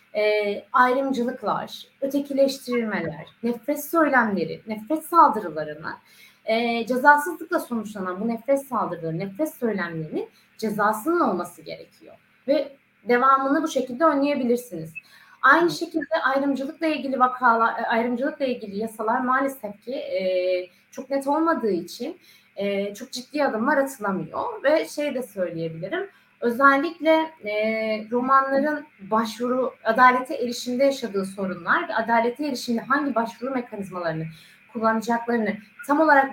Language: Turkish